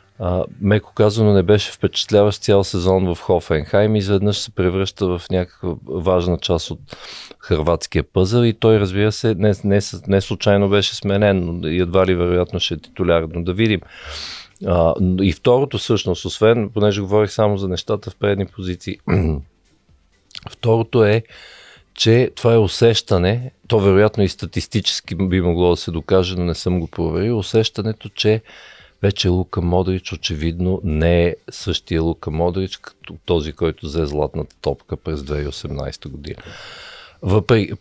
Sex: male